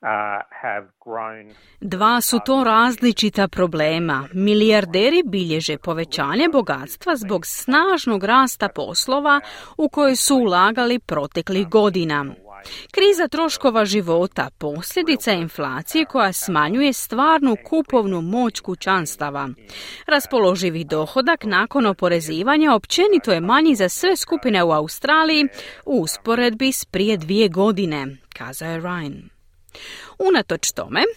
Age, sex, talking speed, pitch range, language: 30-49, female, 100 wpm, 180-275 Hz, Croatian